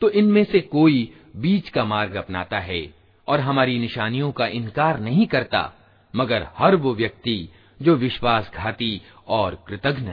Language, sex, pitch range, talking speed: Hindi, male, 95-135 Hz, 140 wpm